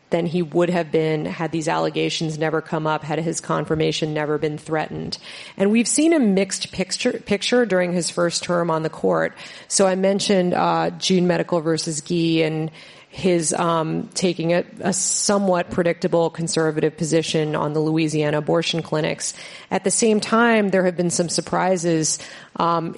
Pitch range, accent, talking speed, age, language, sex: 160-185 Hz, American, 165 wpm, 30-49, English, female